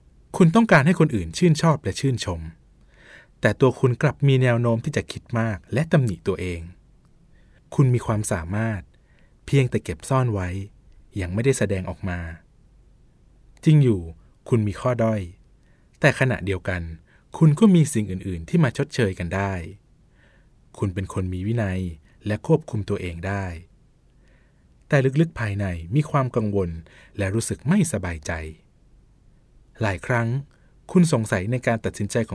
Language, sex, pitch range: Thai, male, 90-130 Hz